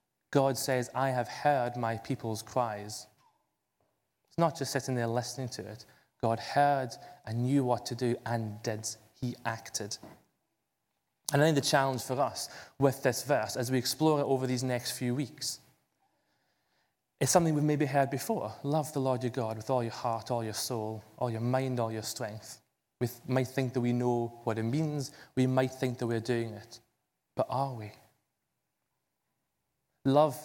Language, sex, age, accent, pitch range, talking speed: English, male, 30-49, British, 115-140 Hz, 175 wpm